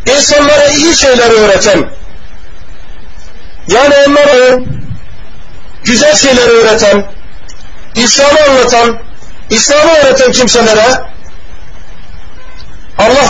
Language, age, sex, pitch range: Turkish, 50-69, male, 225-280 Hz